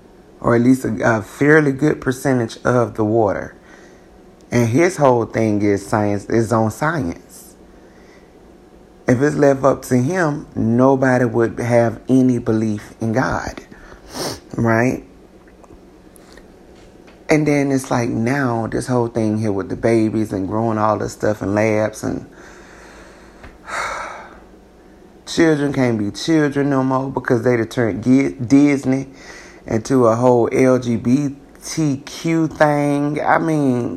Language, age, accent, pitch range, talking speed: English, 30-49, American, 115-135 Hz, 130 wpm